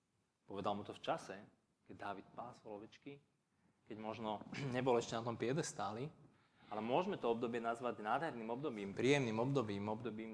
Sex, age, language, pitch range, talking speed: male, 20-39, Slovak, 105-120 Hz, 150 wpm